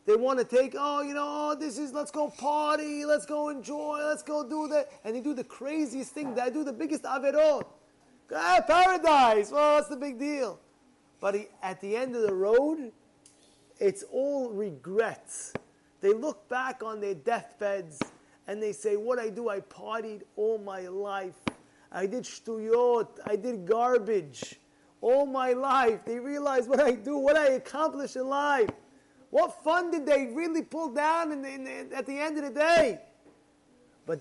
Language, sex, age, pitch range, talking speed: English, male, 30-49, 240-320 Hz, 175 wpm